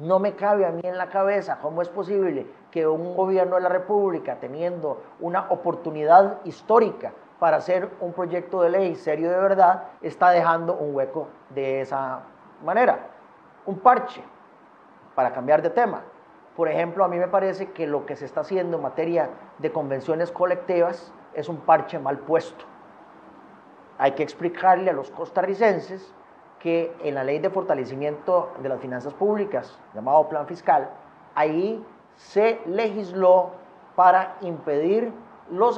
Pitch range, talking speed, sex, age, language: 160-195 Hz, 150 wpm, male, 40-59, Spanish